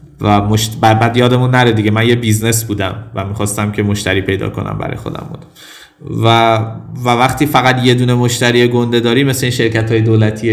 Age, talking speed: 20-39, 190 wpm